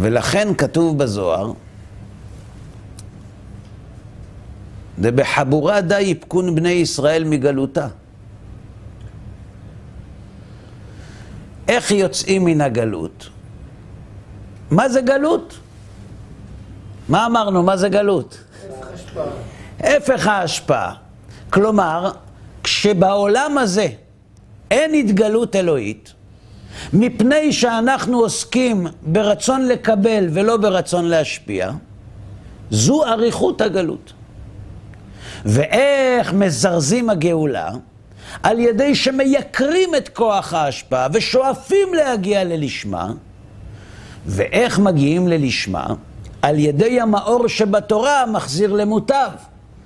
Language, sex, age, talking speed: Hebrew, male, 60-79, 75 wpm